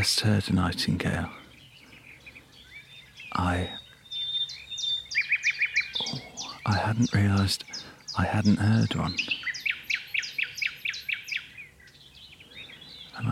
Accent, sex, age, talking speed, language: British, male, 40-59, 70 wpm, English